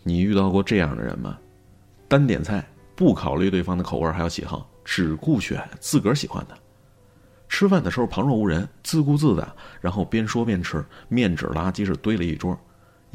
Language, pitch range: Chinese, 90-125 Hz